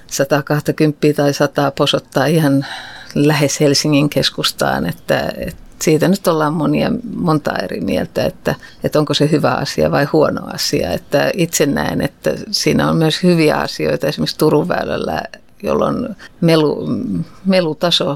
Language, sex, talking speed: Finnish, female, 130 wpm